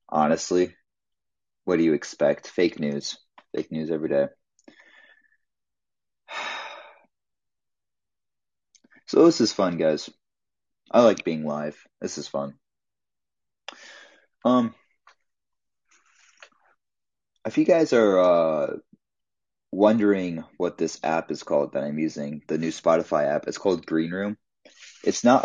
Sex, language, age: male, English, 30-49